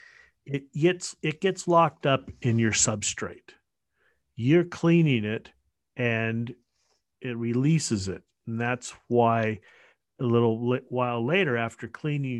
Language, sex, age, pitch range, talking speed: English, male, 50-69, 105-135 Hz, 115 wpm